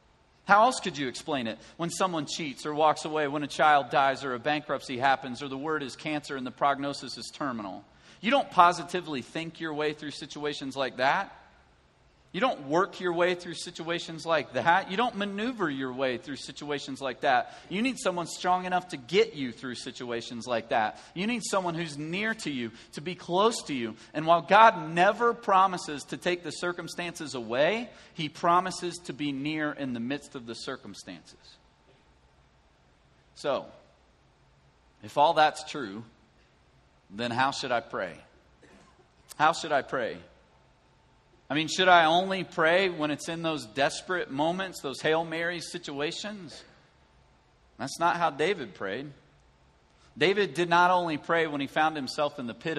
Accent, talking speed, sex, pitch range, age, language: American, 170 wpm, male, 135-175 Hz, 40-59, English